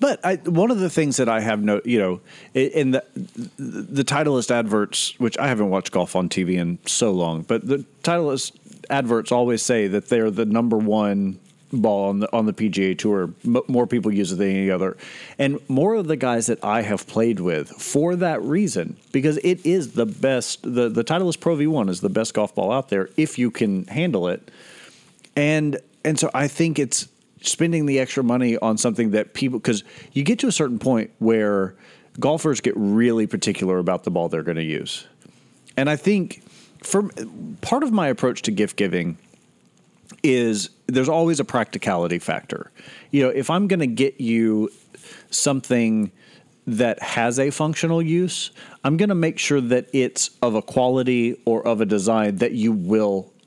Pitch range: 105-155 Hz